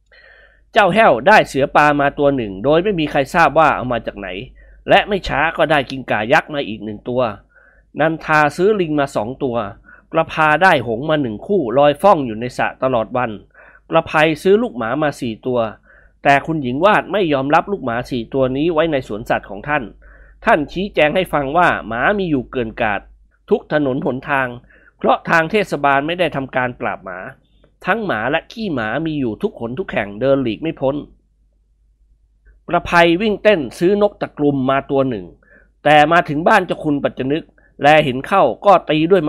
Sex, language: male, Thai